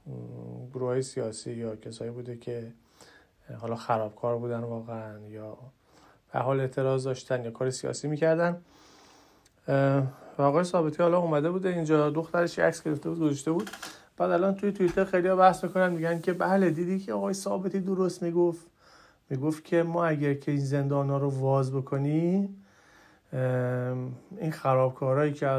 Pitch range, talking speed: 130-170 Hz, 140 wpm